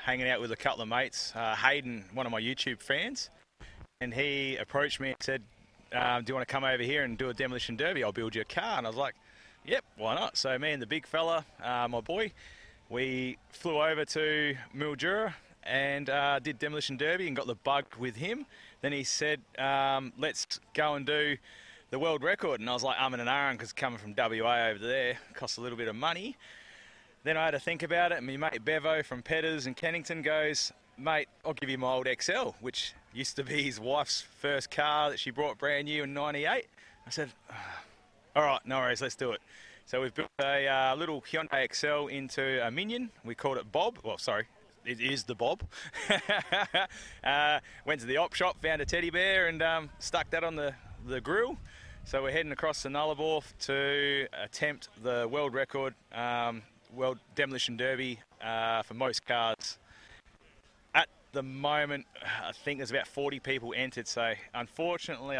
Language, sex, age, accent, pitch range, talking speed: English, male, 30-49, Australian, 120-150 Hz, 200 wpm